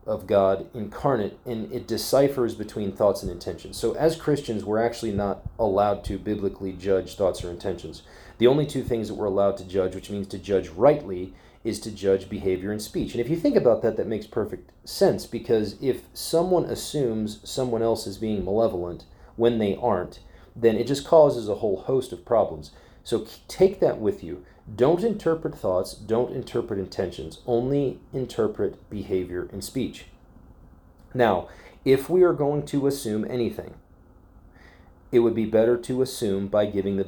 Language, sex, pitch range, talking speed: English, male, 95-120 Hz, 175 wpm